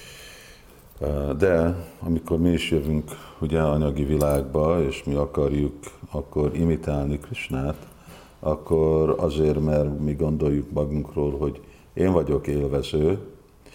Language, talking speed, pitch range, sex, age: Hungarian, 105 wpm, 70-80 Hz, male, 50-69